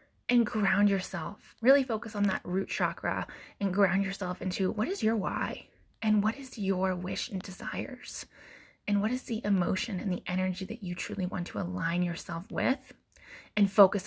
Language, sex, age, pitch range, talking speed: English, female, 20-39, 190-230 Hz, 180 wpm